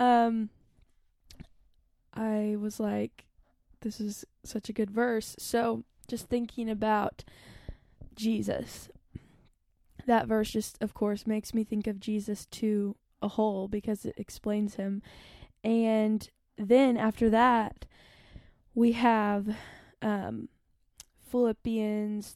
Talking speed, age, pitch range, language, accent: 105 wpm, 10-29, 210-230 Hz, English, American